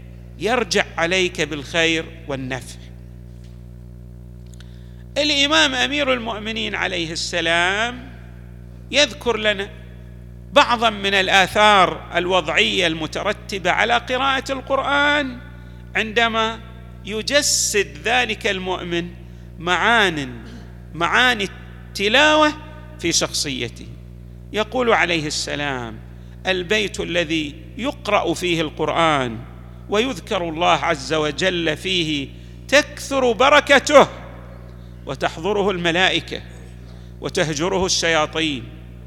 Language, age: Arabic, 50-69